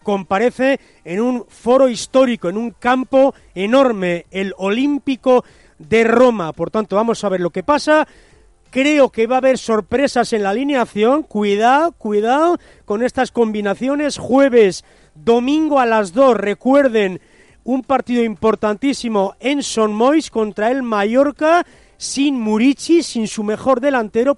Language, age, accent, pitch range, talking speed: Spanish, 40-59, Spanish, 195-265 Hz, 135 wpm